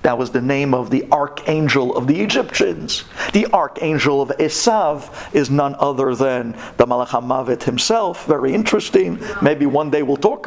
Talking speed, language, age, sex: 160 wpm, English, 50-69, male